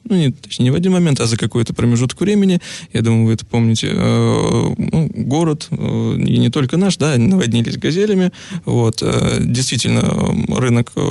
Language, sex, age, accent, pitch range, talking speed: Russian, male, 20-39, native, 120-160 Hz, 160 wpm